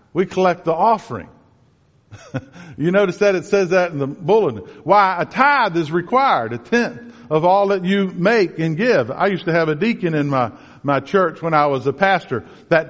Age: 50-69